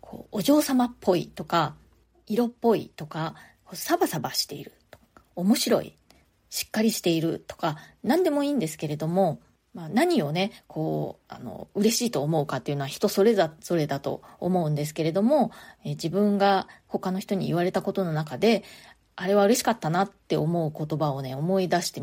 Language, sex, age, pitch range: Japanese, female, 30-49, 160-245 Hz